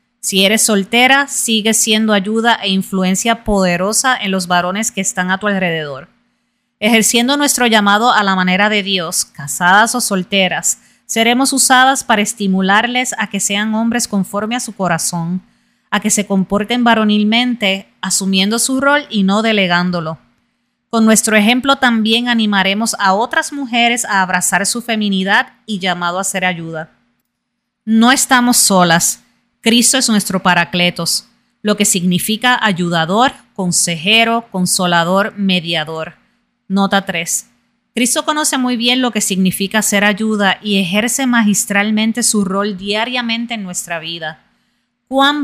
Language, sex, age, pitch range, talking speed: Spanish, female, 30-49, 185-235 Hz, 135 wpm